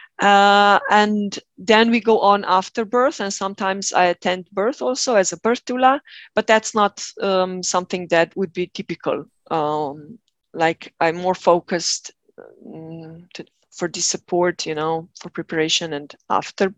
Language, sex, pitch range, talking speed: English, female, 180-215 Hz, 155 wpm